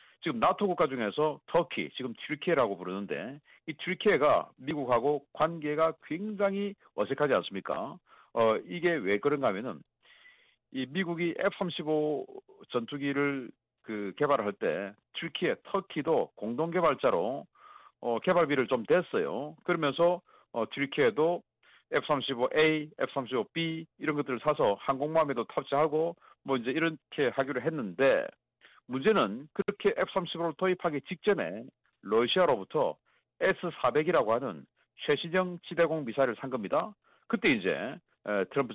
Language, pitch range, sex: Korean, 140-180 Hz, male